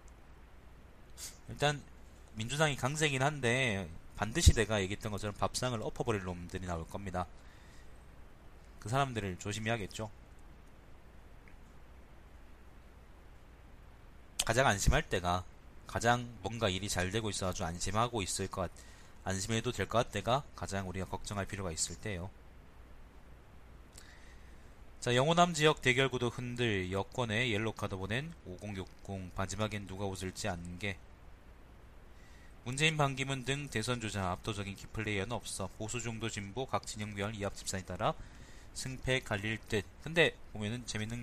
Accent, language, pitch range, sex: native, Korean, 85-120 Hz, male